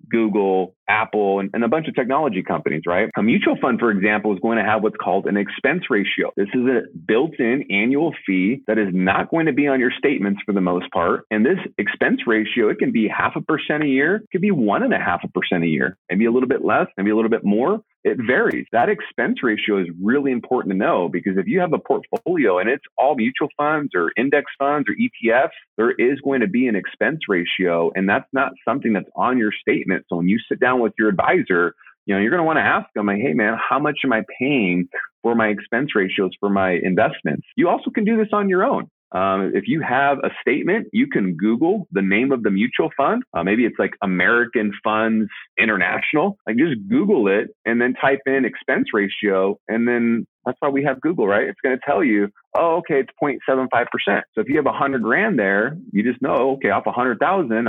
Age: 30-49